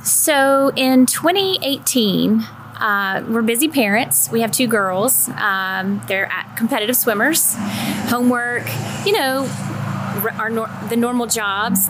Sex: female